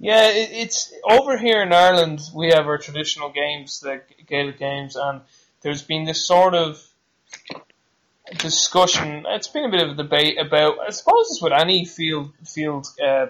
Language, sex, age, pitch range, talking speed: English, male, 20-39, 140-160 Hz, 165 wpm